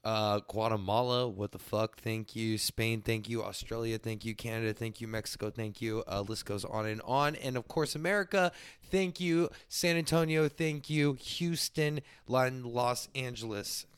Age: 20-39